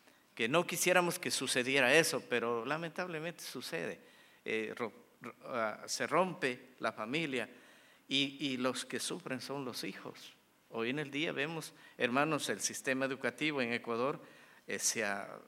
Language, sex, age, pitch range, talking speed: English, male, 50-69, 120-155 Hz, 130 wpm